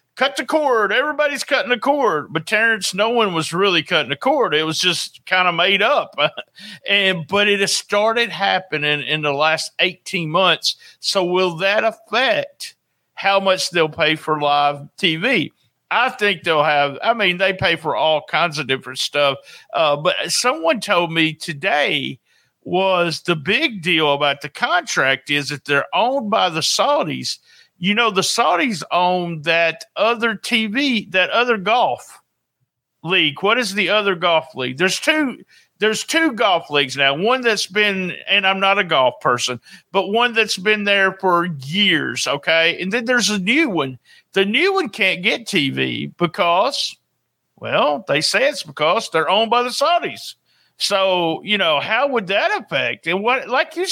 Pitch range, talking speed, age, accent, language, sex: 160-230 Hz, 170 wpm, 50-69, American, English, male